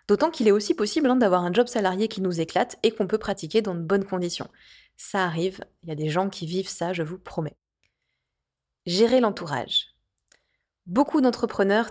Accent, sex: French, female